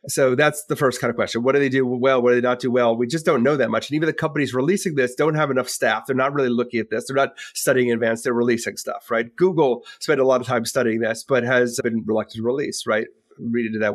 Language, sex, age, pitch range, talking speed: English, male, 30-49, 125-155 Hz, 290 wpm